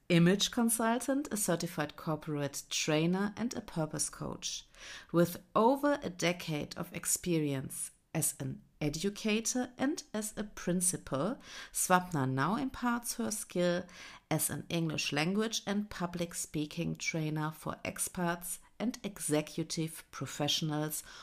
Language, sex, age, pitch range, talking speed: English, female, 50-69, 155-210 Hz, 115 wpm